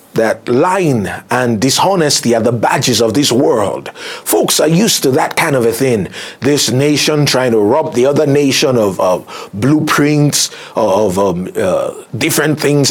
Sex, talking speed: male, 165 wpm